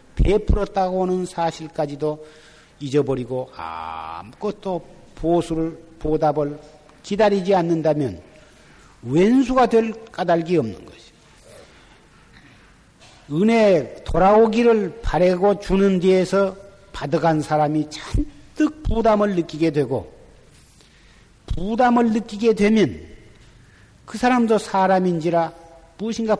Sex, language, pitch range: male, Korean, 150-215 Hz